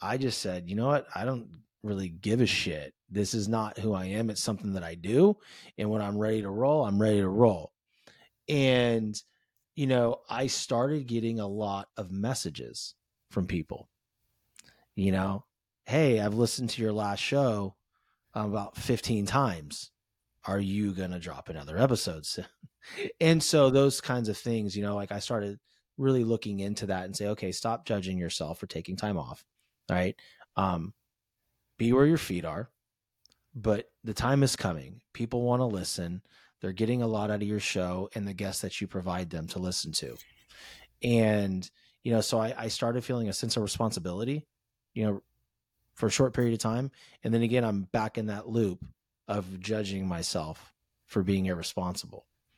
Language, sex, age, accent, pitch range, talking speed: English, male, 30-49, American, 95-120 Hz, 180 wpm